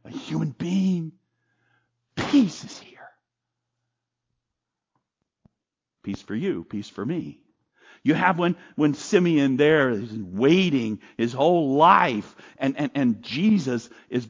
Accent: American